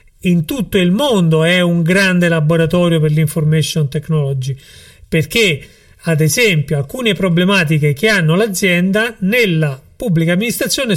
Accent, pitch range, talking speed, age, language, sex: native, 155-200 Hz, 120 wpm, 40-59, Italian, male